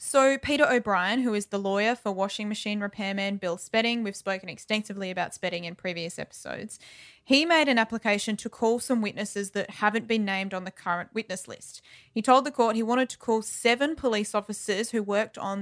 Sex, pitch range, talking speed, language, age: female, 195-230 Hz, 200 wpm, English, 20-39